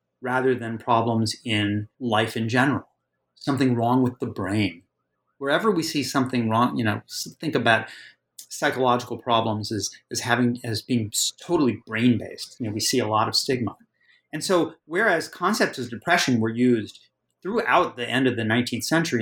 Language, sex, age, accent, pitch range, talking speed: English, male, 30-49, American, 115-140 Hz, 165 wpm